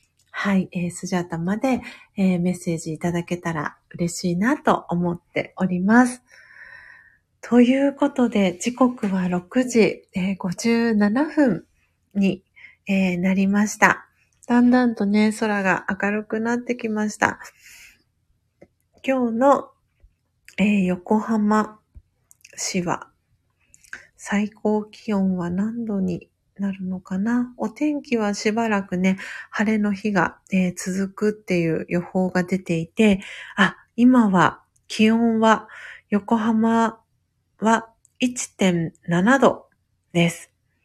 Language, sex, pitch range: Japanese, female, 180-230 Hz